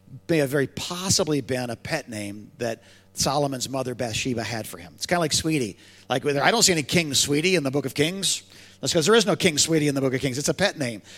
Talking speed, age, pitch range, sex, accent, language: 260 wpm, 40-59, 110-160 Hz, male, American, English